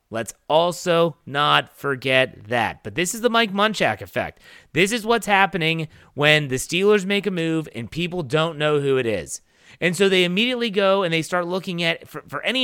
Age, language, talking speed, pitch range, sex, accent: 30-49, English, 200 wpm, 140-200 Hz, male, American